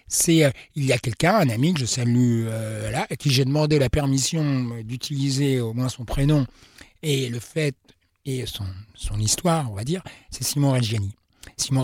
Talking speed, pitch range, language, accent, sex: 180 wpm, 120-150 Hz, French, French, male